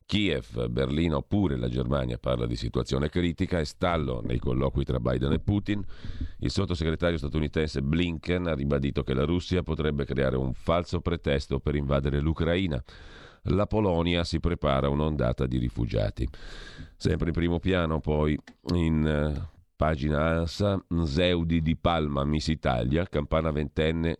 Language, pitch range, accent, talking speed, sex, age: Italian, 70-85 Hz, native, 140 wpm, male, 40-59